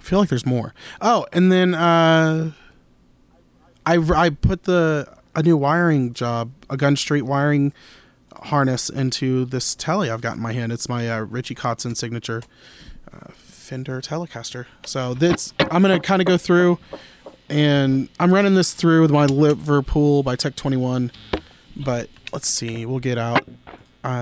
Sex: male